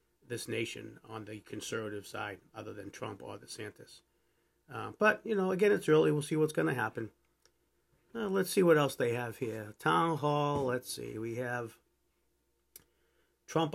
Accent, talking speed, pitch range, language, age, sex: American, 165 wpm, 110-150 Hz, English, 50-69, male